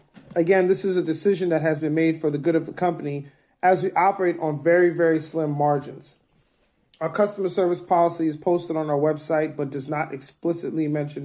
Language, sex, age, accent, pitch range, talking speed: English, male, 40-59, American, 150-180 Hz, 195 wpm